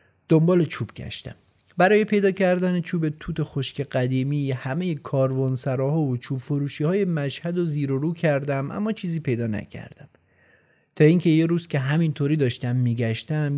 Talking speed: 160 wpm